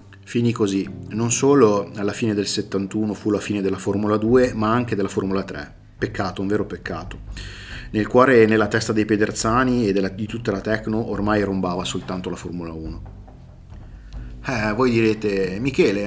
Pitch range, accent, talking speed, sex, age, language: 100-115 Hz, native, 170 wpm, male, 30-49, Italian